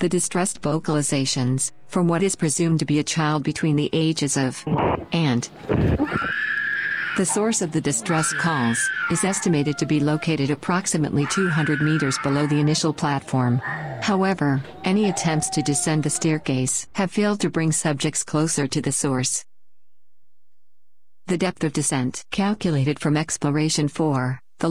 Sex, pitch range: female, 140-170 Hz